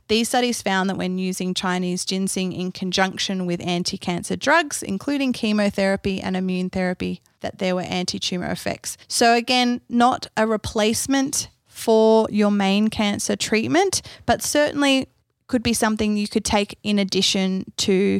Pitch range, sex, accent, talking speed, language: 185-215 Hz, female, Australian, 150 wpm, English